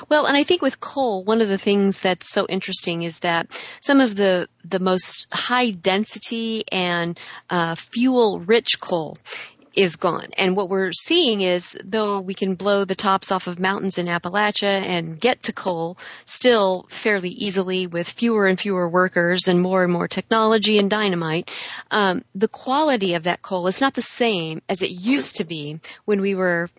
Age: 40-59